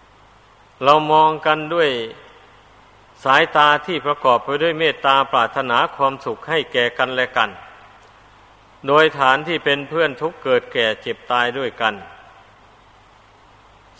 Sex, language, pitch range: male, Thai, 120-145 Hz